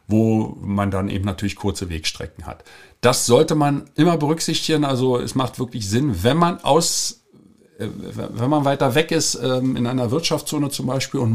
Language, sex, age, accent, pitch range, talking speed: German, male, 50-69, German, 115-150 Hz, 170 wpm